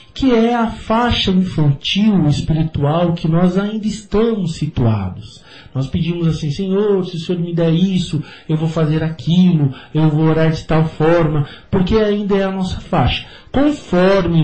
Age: 50-69